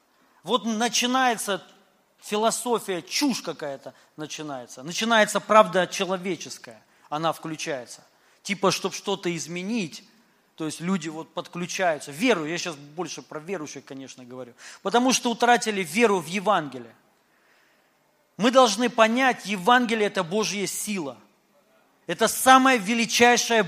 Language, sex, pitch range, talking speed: Russian, male, 190-250 Hz, 110 wpm